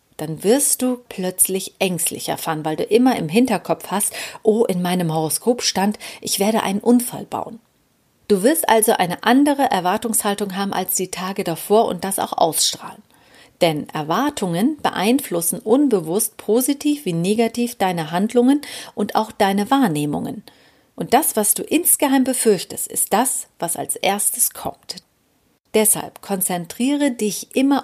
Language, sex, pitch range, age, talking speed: German, female, 195-250 Hz, 40-59, 140 wpm